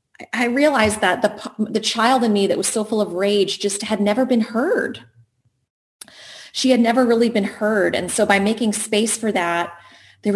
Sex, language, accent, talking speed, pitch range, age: female, English, American, 190 wpm, 185-240 Hz, 30-49